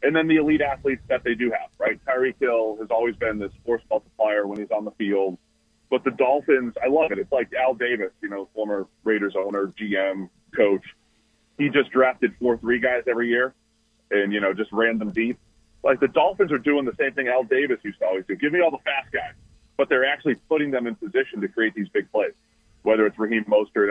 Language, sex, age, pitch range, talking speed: English, male, 30-49, 105-135 Hz, 230 wpm